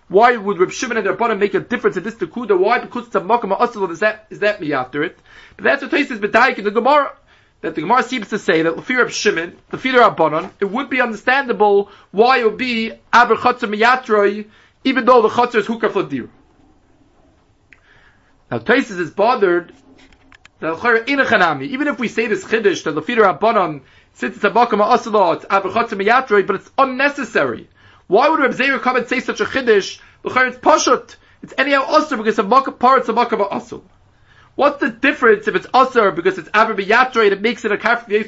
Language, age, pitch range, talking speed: English, 30-49, 205-260 Hz, 200 wpm